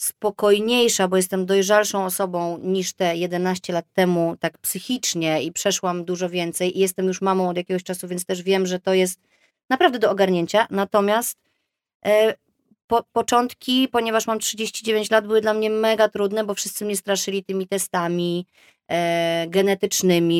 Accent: native